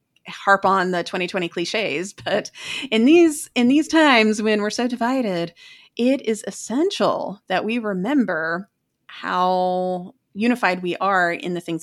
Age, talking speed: 30-49, 140 wpm